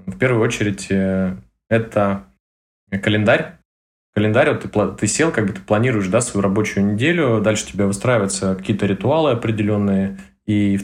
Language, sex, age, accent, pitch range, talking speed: Russian, male, 20-39, native, 100-120 Hz, 150 wpm